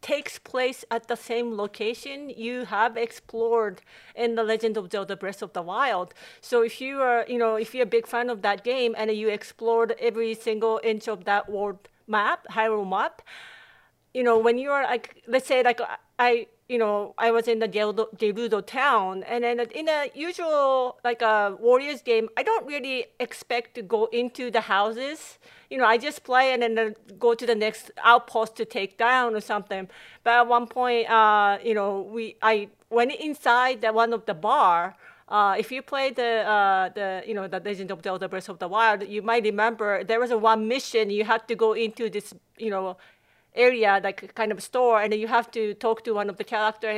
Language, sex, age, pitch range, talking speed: English, female, 40-59, 210-240 Hz, 205 wpm